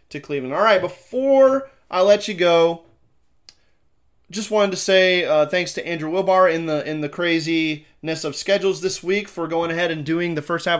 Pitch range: 150-180 Hz